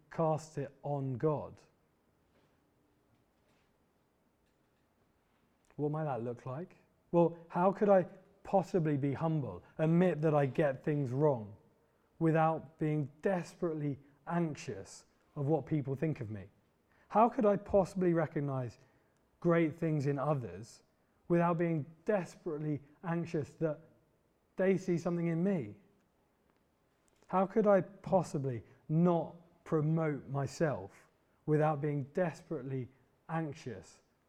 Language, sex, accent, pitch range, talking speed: English, male, British, 130-165 Hz, 110 wpm